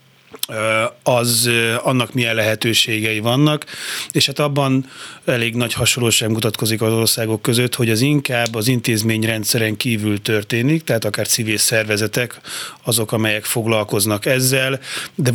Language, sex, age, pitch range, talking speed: Hungarian, male, 30-49, 110-135 Hz, 125 wpm